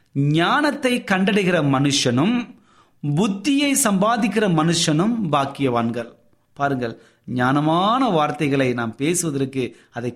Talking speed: 70 wpm